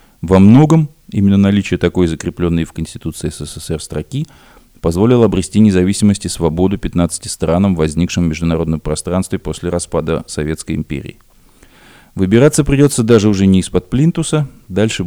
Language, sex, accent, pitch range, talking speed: Russian, male, native, 90-130 Hz, 130 wpm